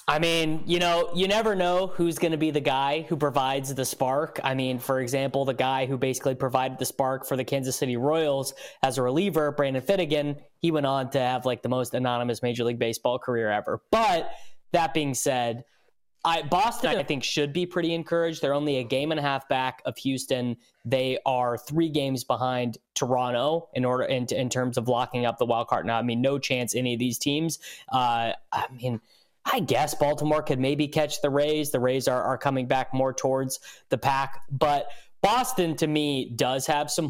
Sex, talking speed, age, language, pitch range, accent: male, 205 wpm, 20-39, English, 125-155 Hz, American